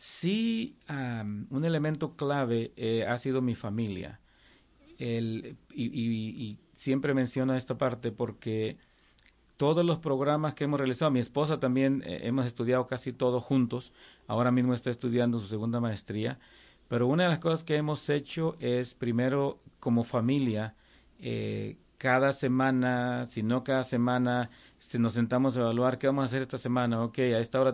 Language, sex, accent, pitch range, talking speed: Spanish, male, Mexican, 120-140 Hz, 160 wpm